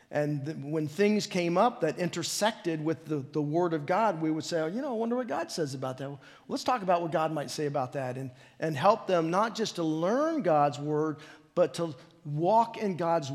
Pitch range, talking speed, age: 150-180 Hz, 220 wpm, 50-69